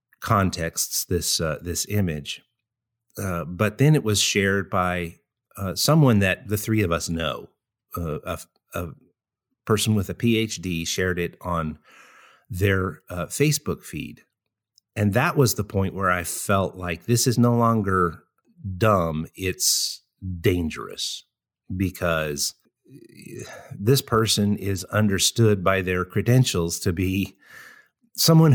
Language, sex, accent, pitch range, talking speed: English, male, American, 95-120 Hz, 130 wpm